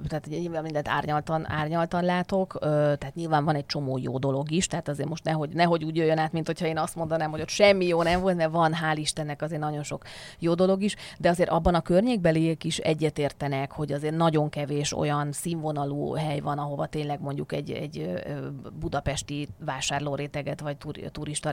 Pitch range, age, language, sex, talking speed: 145-170 Hz, 30-49, Hungarian, female, 185 wpm